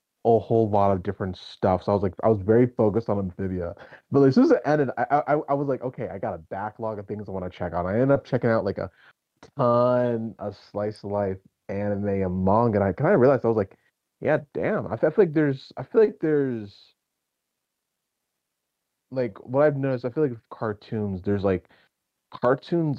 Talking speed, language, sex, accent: 225 wpm, English, male, American